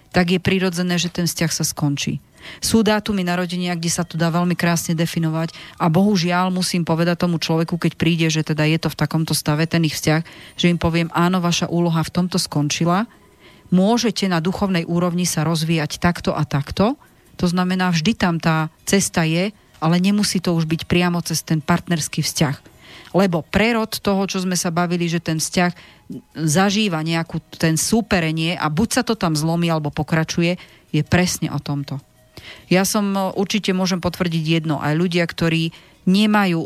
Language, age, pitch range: Slovak, 40-59, 160-185 Hz